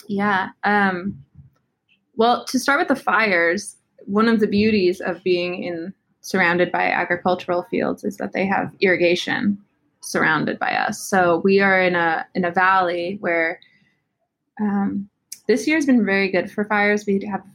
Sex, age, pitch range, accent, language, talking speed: female, 20-39, 180-220 Hz, American, English, 155 wpm